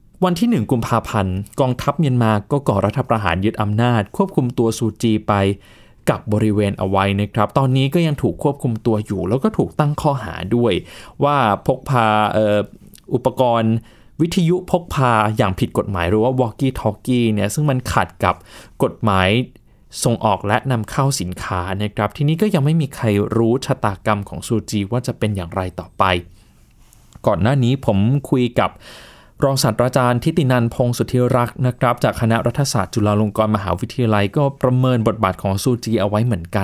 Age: 20-39